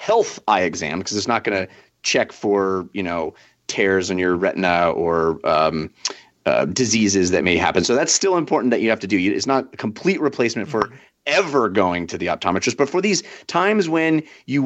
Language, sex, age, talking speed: English, male, 30-49, 200 wpm